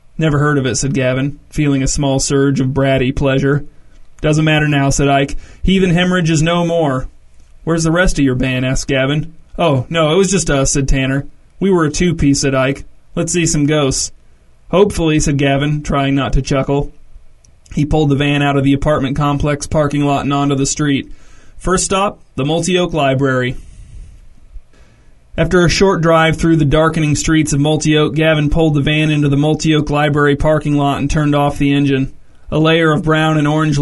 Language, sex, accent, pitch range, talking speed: English, male, American, 140-160 Hz, 190 wpm